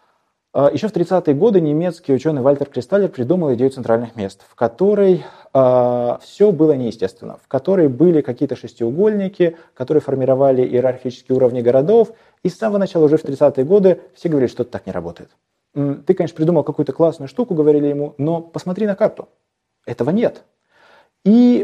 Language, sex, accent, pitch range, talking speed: Russian, male, native, 125-175 Hz, 160 wpm